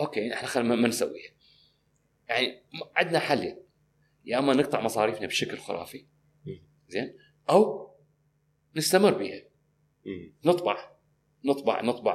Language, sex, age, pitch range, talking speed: Arabic, male, 40-59, 130-190 Hz, 105 wpm